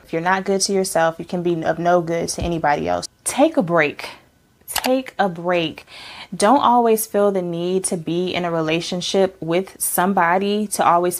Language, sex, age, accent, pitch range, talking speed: English, female, 20-39, American, 170-195 Hz, 180 wpm